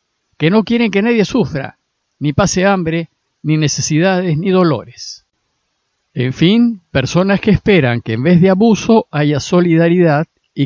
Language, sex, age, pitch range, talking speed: Spanish, male, 50-69, 145-190 Hz, 145 wpm